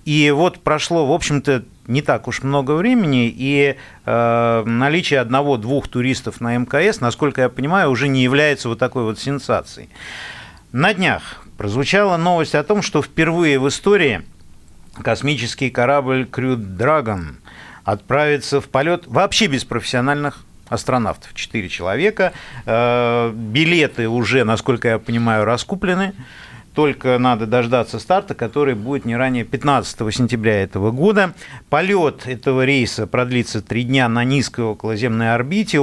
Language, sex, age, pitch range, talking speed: Russian, male, 50-69, 115-145 Hz, 130 wpm